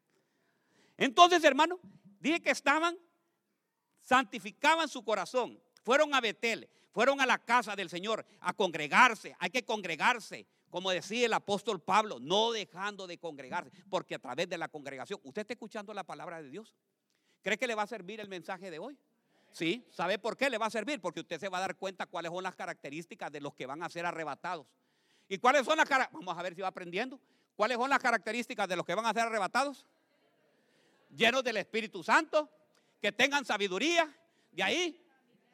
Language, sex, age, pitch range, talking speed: Spanish, male, 50-69, 185-275 Hz, 185 wpm